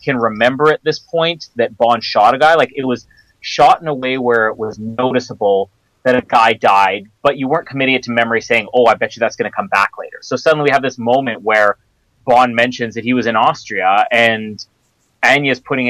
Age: 30-49